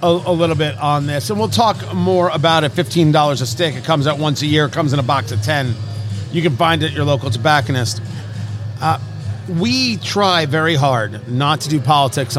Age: 40-59